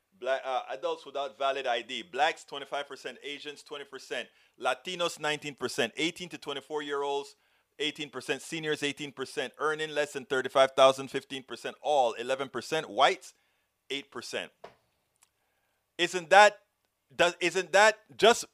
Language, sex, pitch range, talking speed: English, male, 115-160 Hz, 110 wpm